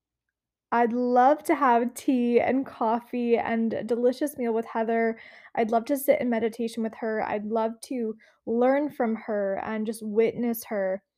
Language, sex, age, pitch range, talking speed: English, female, 20-39, 210-245 Hz, 165 wpm